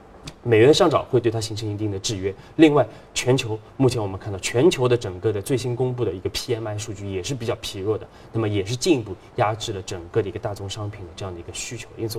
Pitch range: 105-125 Hz